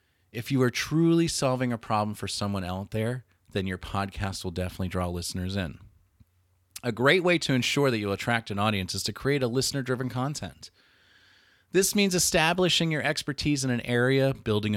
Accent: American